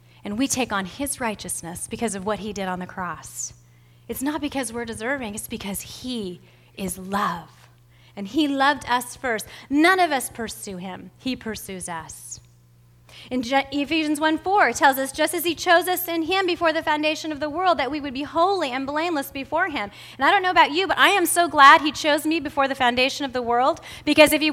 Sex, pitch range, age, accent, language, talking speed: female, 225-345 Hz, 30-49, American, English, 220 wpm